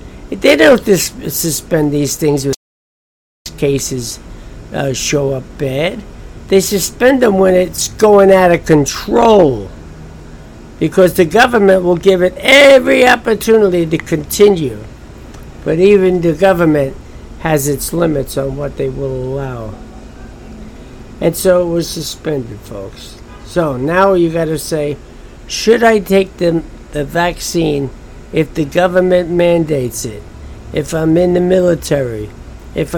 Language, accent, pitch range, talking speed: English, American, 130-180 Hz, 135 wpm